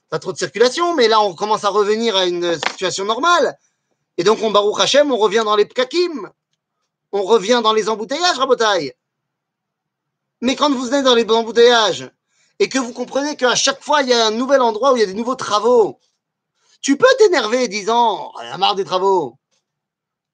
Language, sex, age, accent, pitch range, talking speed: French, male, 30-49, French, 185-280 Hz, 205 wpm